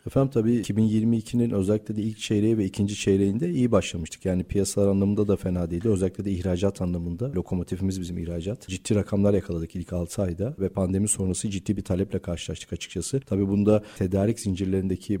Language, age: Turkish, 40-59